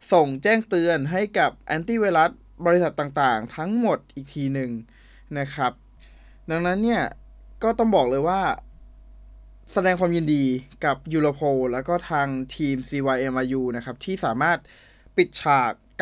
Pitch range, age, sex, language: 130-170 Hz, 20-39, male, Thai